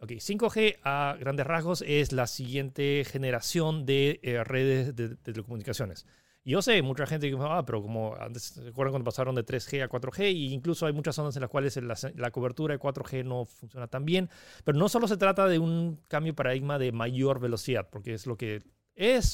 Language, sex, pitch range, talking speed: Spanish, male, 125-160 Hz, 215 wpm